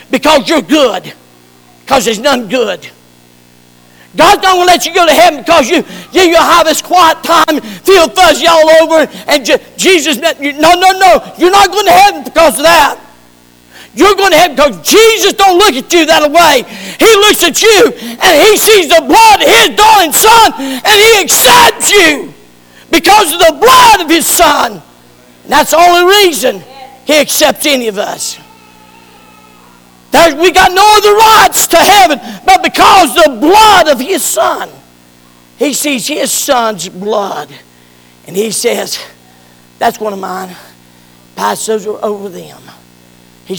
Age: 50-69